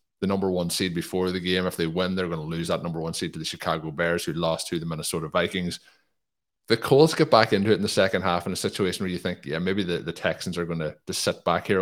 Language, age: English, 20-39